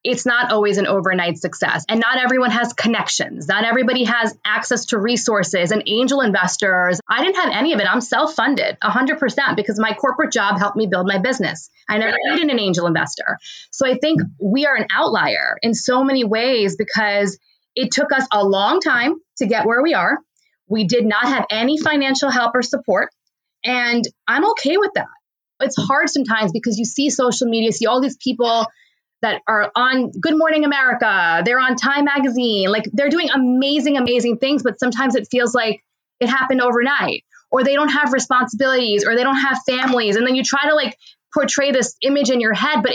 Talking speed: 195 wpm